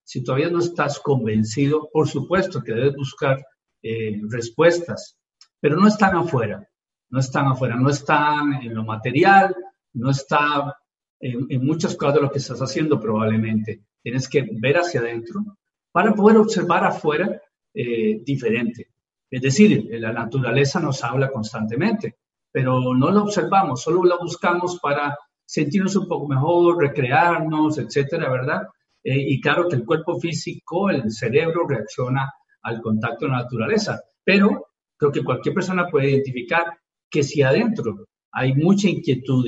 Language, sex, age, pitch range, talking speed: Spanish, male, 50-69, 125-175 Hz, 145 wpm